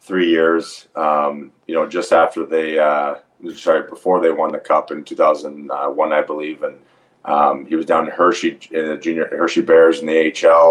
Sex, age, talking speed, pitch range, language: male, 30-49, 190 wpm, 80-95 Hz, English